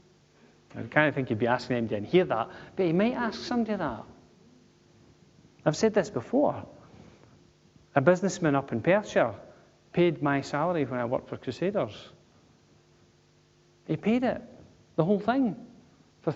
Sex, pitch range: male, 130-175 Hz